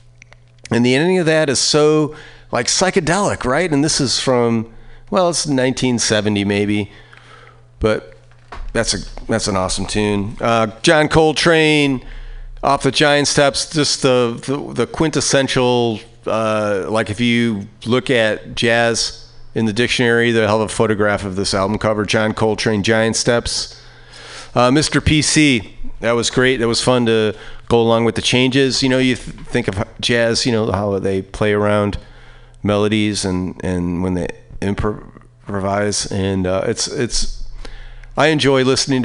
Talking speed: 155 wpm